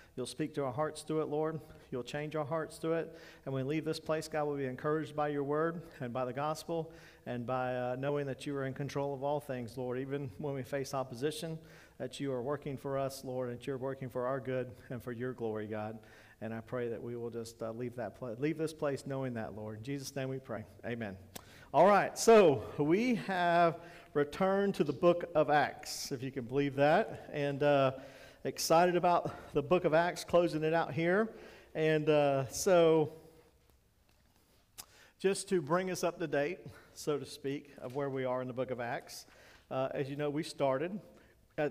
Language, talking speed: English, 215 wpm